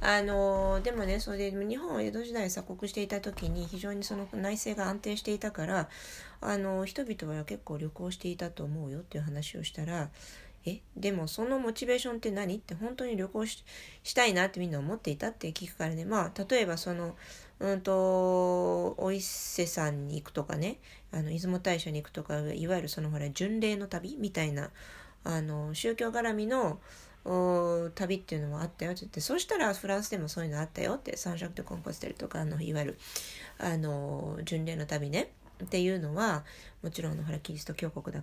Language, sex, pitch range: Japanese, female, 160-205 Hz